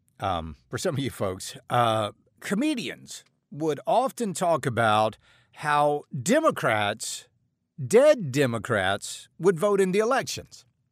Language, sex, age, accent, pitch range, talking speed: English, male, 50-69, American, 130-190 Hz, 115 wpm